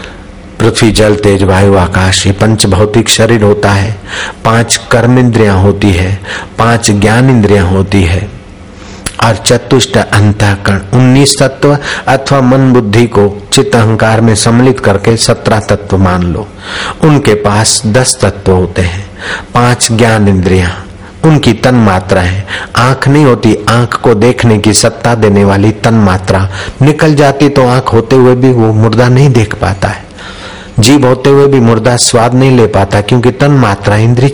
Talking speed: 110 wpm